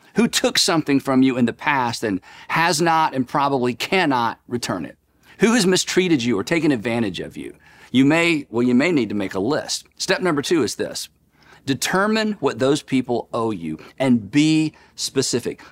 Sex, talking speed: male, 185 wpm